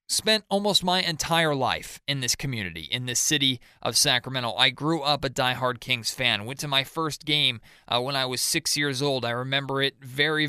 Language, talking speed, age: English, 205 wpm, 20-39